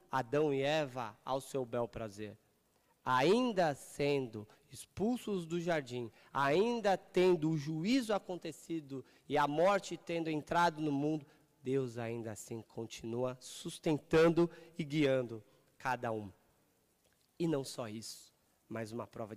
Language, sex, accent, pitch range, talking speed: Portuguese, male, Brazilian, 115-150 Hz, 125 wpm